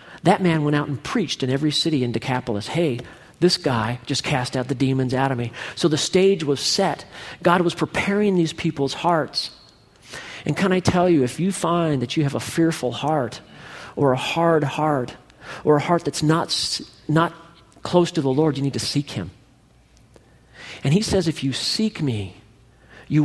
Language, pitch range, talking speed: English, 120-160 Hz, 190 wpm